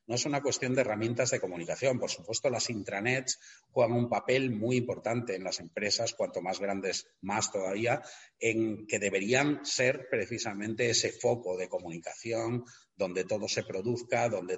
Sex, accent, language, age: male, Spanish, Spanish, 40-59